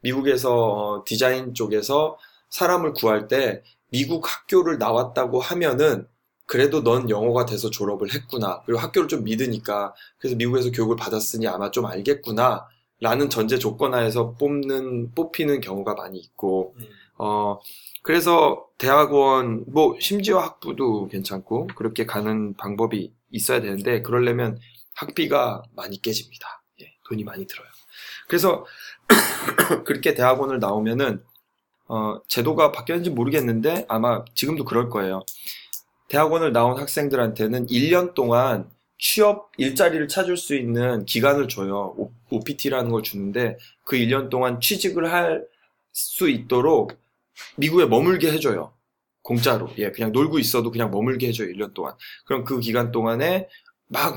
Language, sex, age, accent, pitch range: Korean, male, 20-39, native, 110-140 Hz